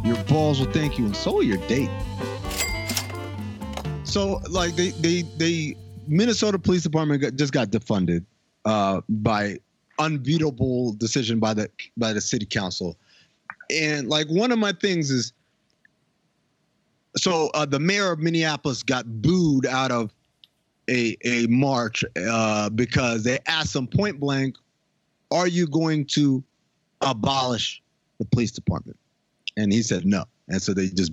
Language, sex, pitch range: English, male, 115-160 Hz